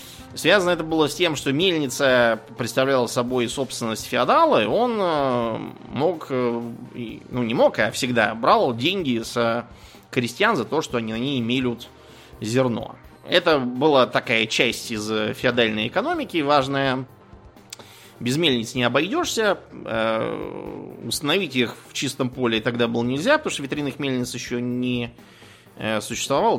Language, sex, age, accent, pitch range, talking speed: Russian, male, 20-39, native, 115-145 Hz, 130 wpm